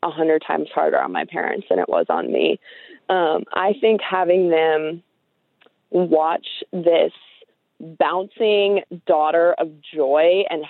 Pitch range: 160-195 Hz